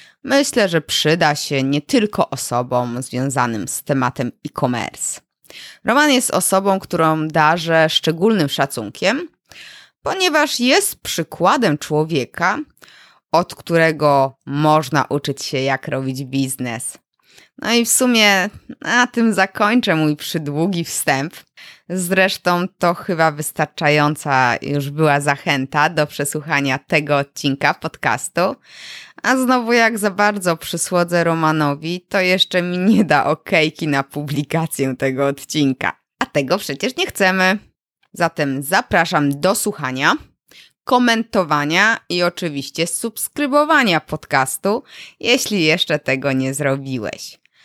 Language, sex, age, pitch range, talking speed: Polish, female, 20-39, 140-190 Hz, 110 wpm